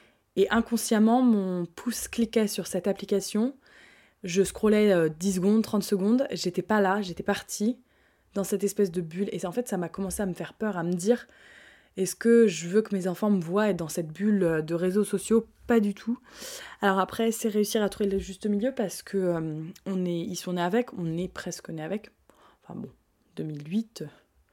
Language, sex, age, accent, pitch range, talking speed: French, female, 20-39, French, 180-220 Hz, 205 wpm